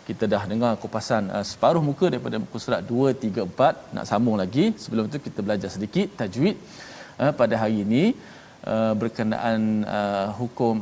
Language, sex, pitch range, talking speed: Malayalam, male, 110-145 Hz, 165 wpm